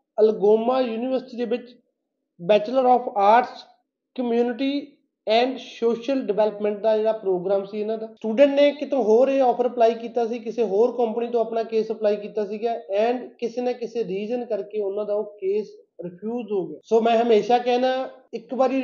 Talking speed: 170 wpm